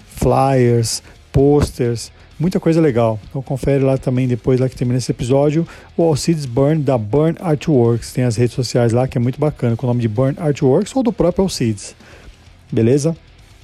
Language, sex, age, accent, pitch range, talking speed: Portuguese, male, 40-59, Brazilian, 120-150 Hz, 185 wpm